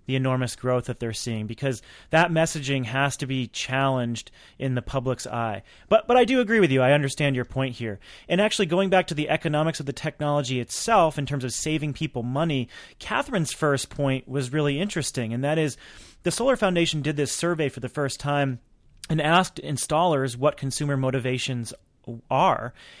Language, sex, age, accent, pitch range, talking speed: English, male, 30-49, American, 130-160 Hz, 190 wpm